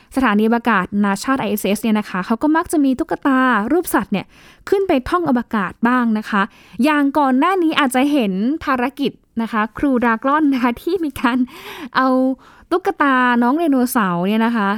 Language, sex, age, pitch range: Thai, female, 10-29, 215-285 Hz